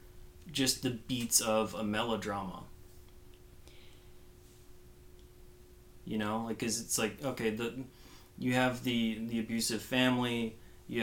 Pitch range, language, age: 105-125 Hz, English, 30-49